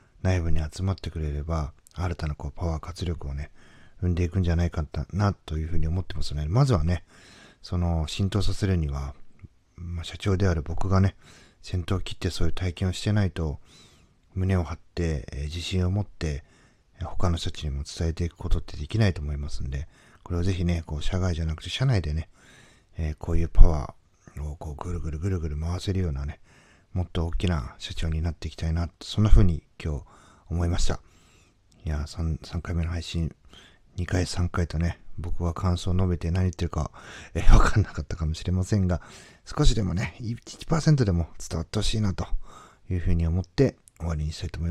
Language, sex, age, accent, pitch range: Japanese, male, 40-59, native, 80-95 Hz